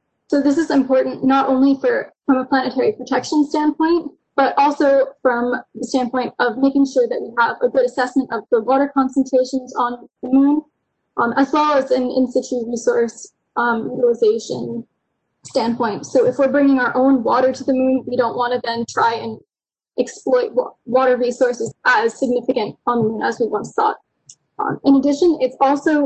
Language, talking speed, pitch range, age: English, 180 wpm, 250-300 Hz, 10-29